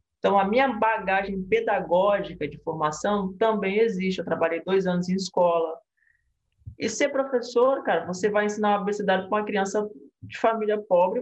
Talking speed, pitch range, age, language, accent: 160 wpm, 190-245 Hz, 20-39, Portuguese, Brazilian